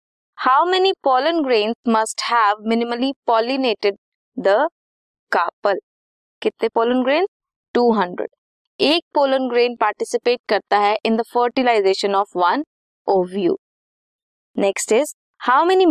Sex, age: female, 20-39